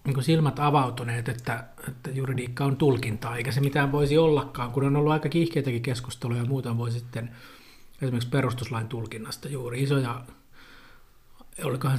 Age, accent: 50-69, native